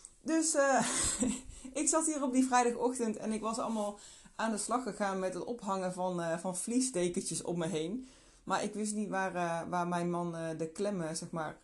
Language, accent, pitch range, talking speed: Dutch, Dutch, 170-230 Hz, 205 wpm